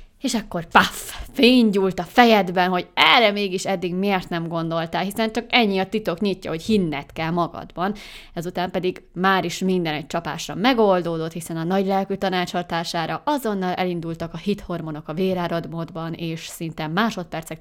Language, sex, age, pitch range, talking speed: Hungarian, female, 20-39, 165-200 Hz, 150 wpm